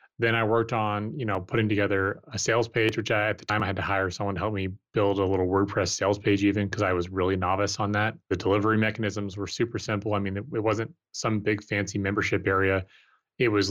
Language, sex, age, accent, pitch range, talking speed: English, male, 30-49, American, 95-110 Hz, 245 wpm